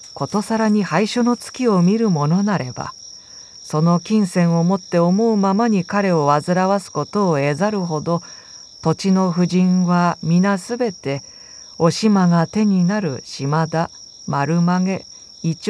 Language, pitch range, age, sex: Japanese, 155-205 Hz, 50-69, female